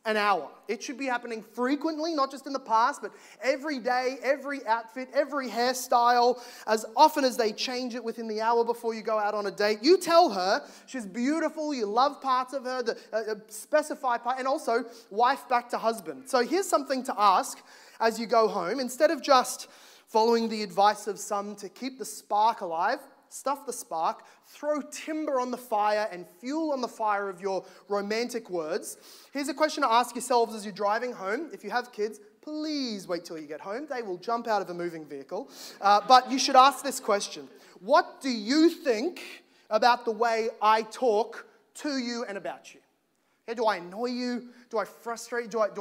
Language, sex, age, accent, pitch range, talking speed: English, male, 20-39, Australian, 215-270 Hz, 200 wpm